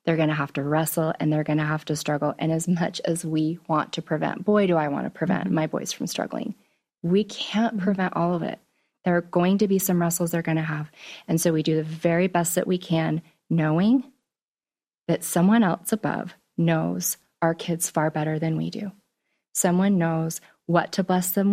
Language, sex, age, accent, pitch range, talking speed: English, female, 30-49, American, 155-185 Hz, 215 wpm